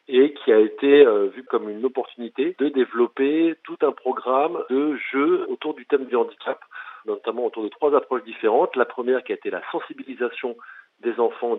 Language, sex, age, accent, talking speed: French, male, 40-59, French, 185 wpm